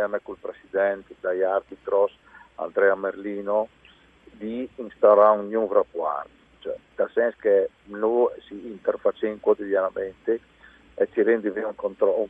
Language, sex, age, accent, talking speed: Italian, male, 50-69, native, 120 wpm